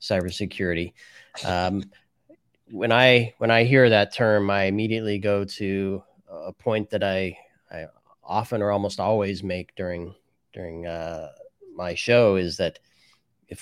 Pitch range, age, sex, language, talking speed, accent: 95-115 Hz, 30-49, male, English, 135 wpm, American